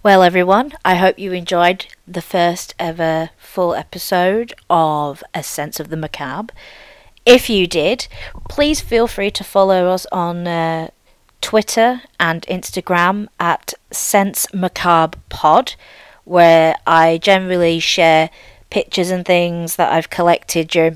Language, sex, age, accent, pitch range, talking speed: English, female, 40-59, British, 165-195 Hz, 125 wpm